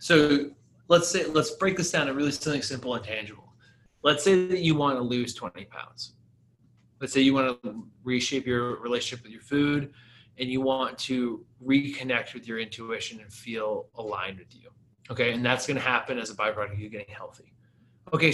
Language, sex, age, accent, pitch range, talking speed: English, male, 20-39, American, 115-140 Hz, 195 wpm